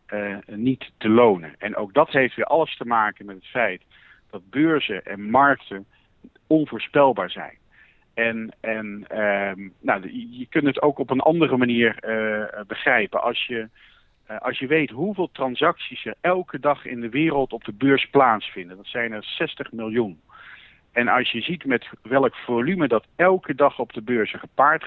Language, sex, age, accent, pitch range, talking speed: Dutch, male, 50-69, Dutch, 110-150 Hz, 170 wpm